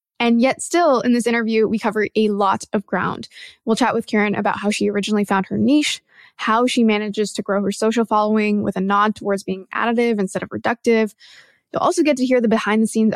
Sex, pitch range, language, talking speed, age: female, 200-235 Hz, English, 225 wpm, 20-39